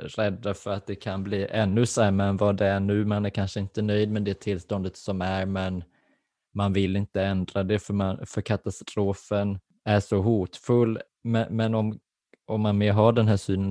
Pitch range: 100-110 Hz